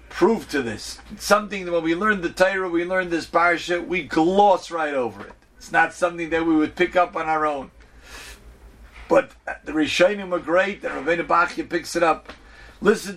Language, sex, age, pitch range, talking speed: English, male, 50-69, 160-200 Hz, 195 wpm